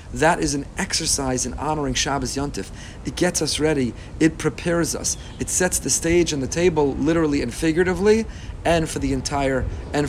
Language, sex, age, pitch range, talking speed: English, male, 40-59, 125-165 Hz, 180 wpm